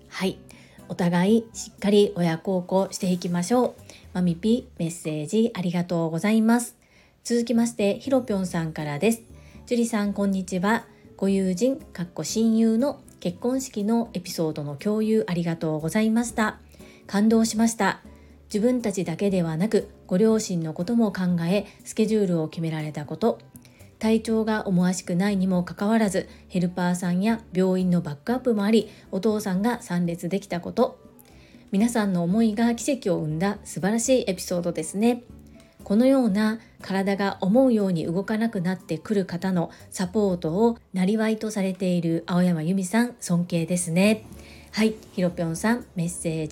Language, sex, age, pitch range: Japanese, female, 40-59, 175-220 Hz